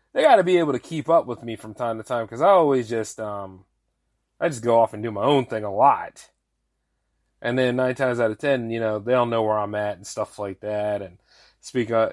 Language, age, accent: English, 30-49, American